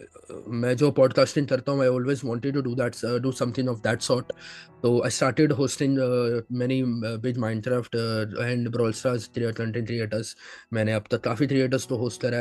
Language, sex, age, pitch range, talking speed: Hindi, male, 20-39, 120-135 Hz, 155 wpm